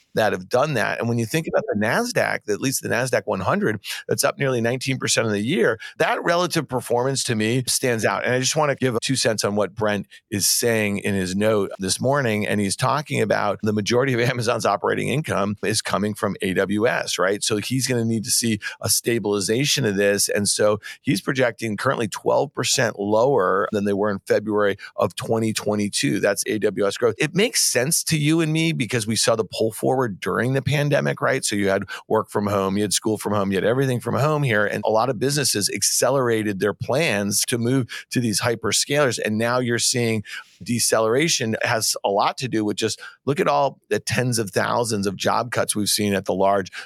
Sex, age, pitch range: male, 40-59, 105-130 Hz